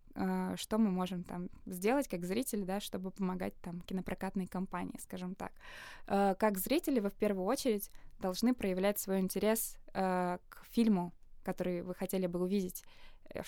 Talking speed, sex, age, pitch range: 145 wpm, female, 20-39, 185-215 Hz